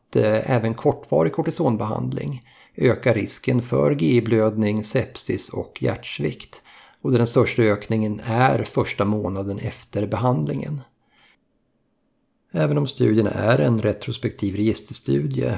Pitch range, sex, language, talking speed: 100-125 Hz, male, Swedish, 100 wpm